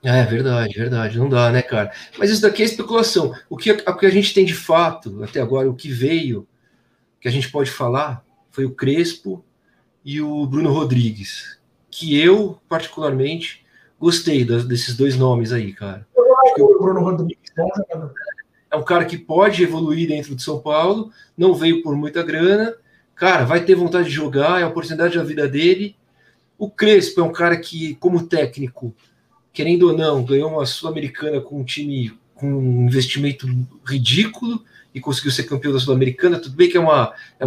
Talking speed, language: 180 wpm, Portuguese